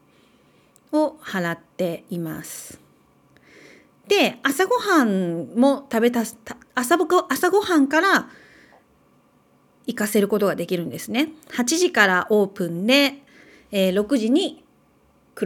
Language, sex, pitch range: Japanese, female, 190-280 Hz